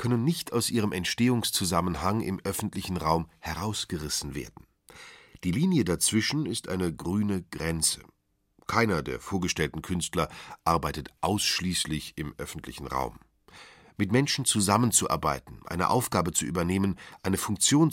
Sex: male